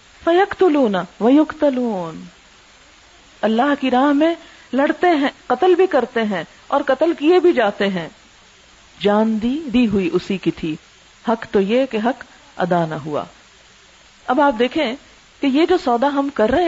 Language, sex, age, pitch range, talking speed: Urdu, female, 50-69, 205-285 Hz, 160 wpm